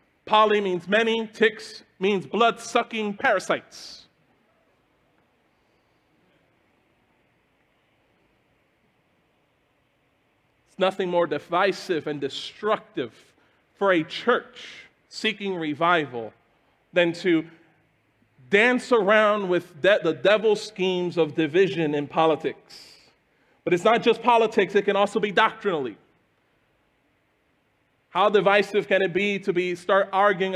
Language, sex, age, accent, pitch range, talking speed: English, male, 40-59, American, 180-225 Hz, 100 wpm